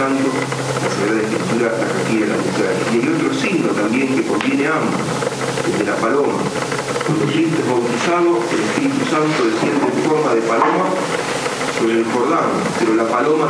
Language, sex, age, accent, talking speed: Spanish, male, 40-59, Argentinian, 155 wpm